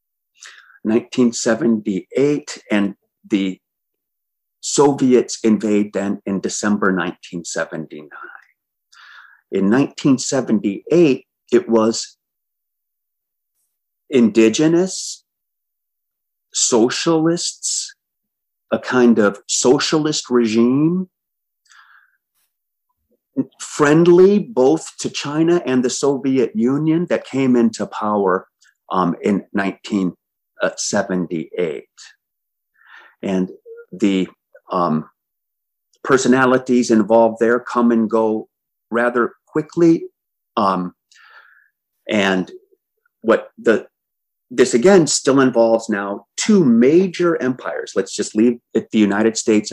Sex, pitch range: male, 105-155 Hz